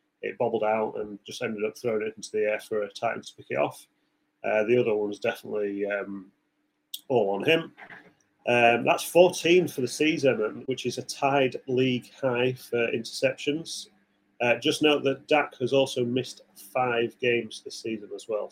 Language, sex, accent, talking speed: English, male, British, 180 wpm